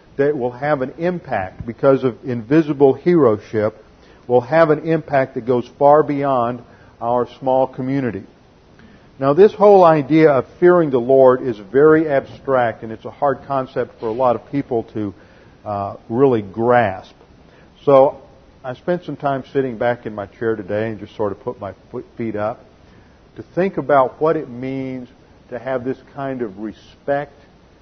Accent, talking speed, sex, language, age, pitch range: American, 165 wpm, male, English, 50-69, 110-135 Hz